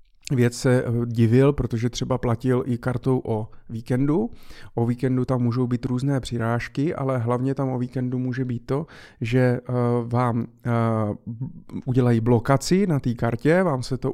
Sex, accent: male, native